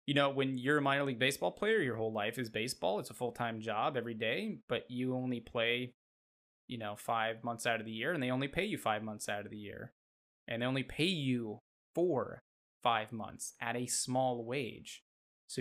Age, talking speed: 20-39, 220 wpm